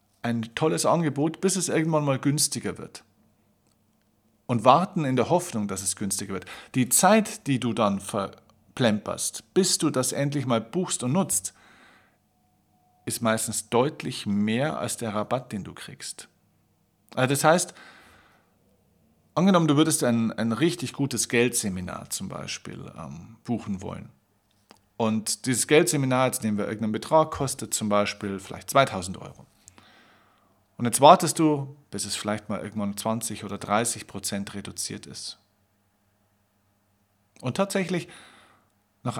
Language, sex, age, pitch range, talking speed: German, male, 50-69, 105-145 Hz, 140 wpm